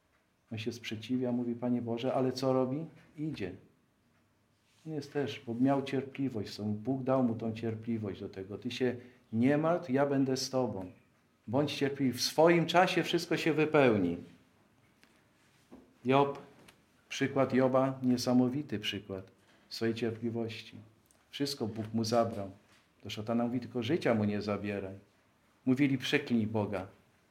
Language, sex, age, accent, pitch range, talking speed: Polish, male, 50-69, native, 115-150 Hz, 125 wpm